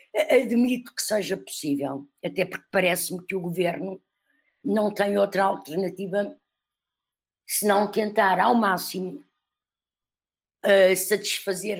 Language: Portuguese